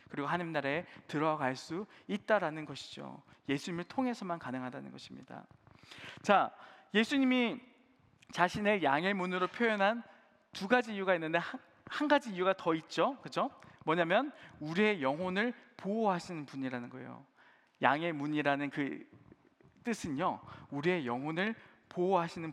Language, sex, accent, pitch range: Korean, male, native, 155-220 Hz